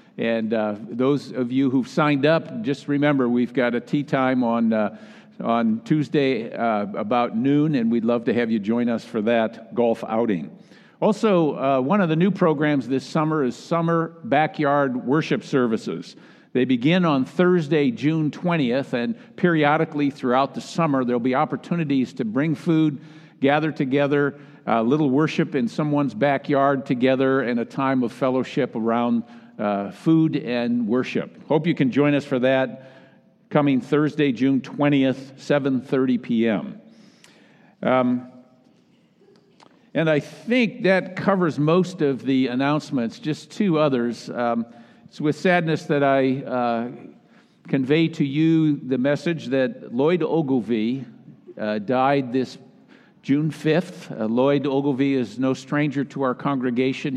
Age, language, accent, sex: 50-69, English, American, male